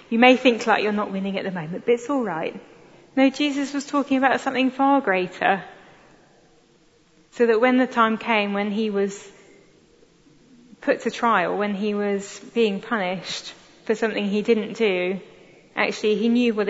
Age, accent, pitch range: 20-39, British, 190-230 Hz